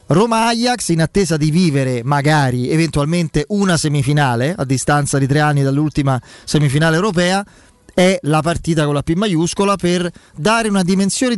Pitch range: 140-175 Hz